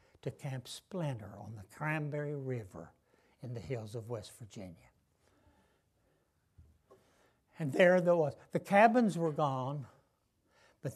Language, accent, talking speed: English, American, 120 wpm